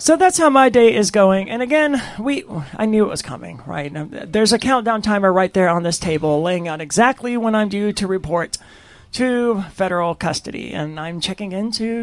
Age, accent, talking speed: 40-59, American, 200 wpm